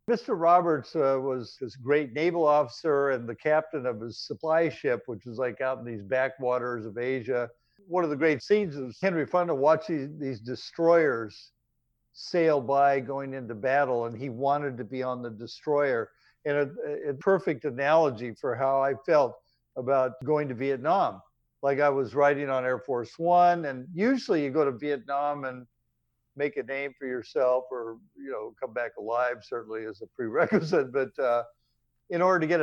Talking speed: 180 wpm